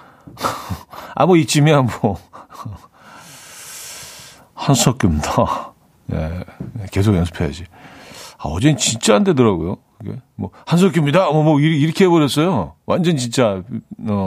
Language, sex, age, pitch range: Korean, male, 40-59, 110-150 Hz